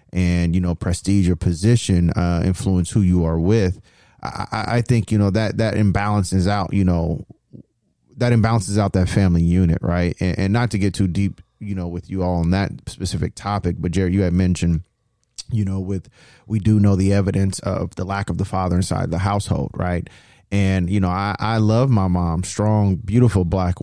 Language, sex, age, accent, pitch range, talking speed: English, male, 30-49, American, 95-115 Hz, 200 wpm